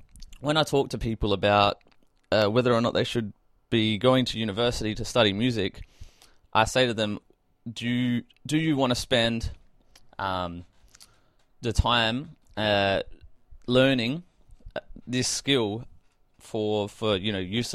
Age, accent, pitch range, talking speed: 20-39, Australian, 95-115 Hz, 140 wpm